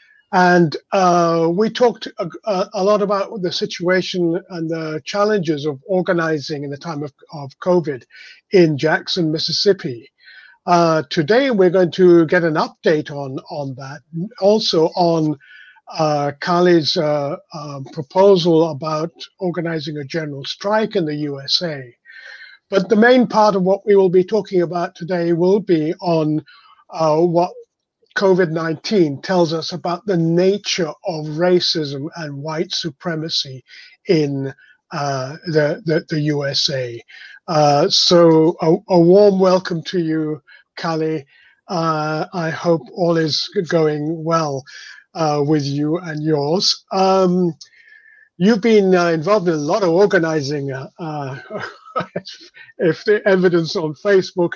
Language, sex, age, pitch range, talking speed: English, male, 50-69, 155-190 Hz, 135 wpm